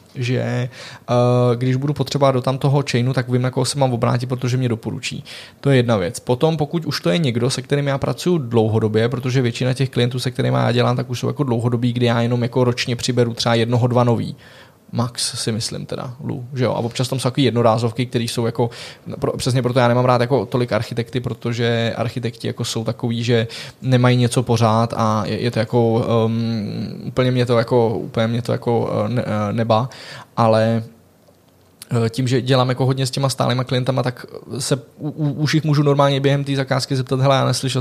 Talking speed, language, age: 205 wpm, Czech, 20-39